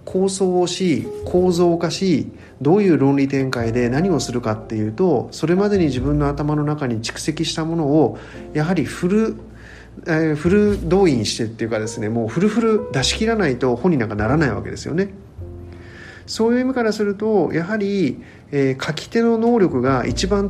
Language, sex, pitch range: Japanese, male, 115-180 Hz